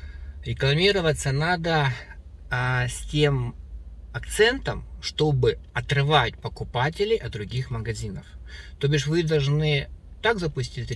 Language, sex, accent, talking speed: Russian, male, native, 100 wpm